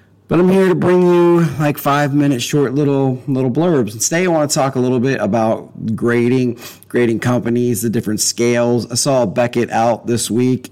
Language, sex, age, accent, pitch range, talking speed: English, male, 30-49, American, 105-140 Hz, 190 wpm